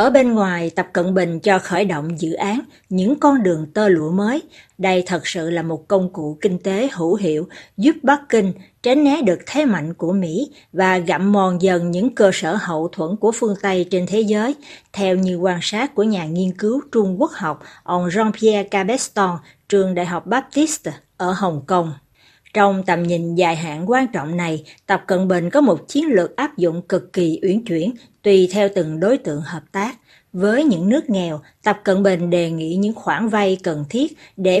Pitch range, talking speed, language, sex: 170-220 Hz, 205 wpm, Vietnamese, female